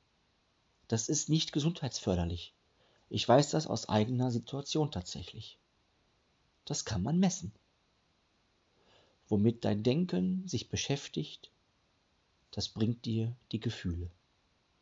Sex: male